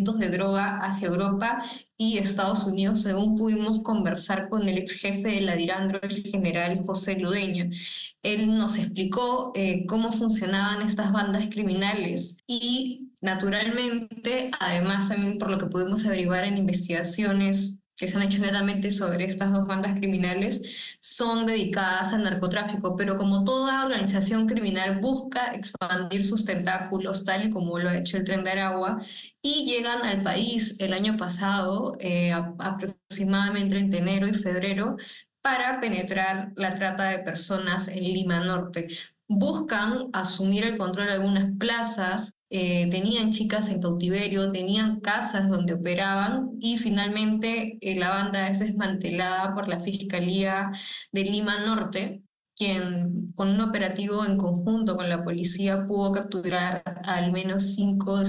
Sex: female